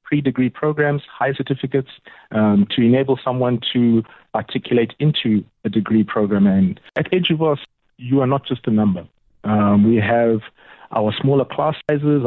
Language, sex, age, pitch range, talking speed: English, male, 30-49, 110-140 Hz, 145 wpm